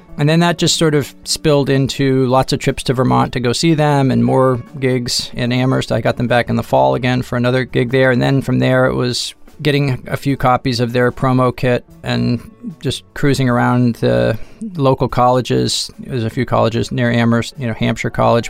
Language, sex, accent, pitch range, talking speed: English, male, American, 120-135 Hz, 215 wpm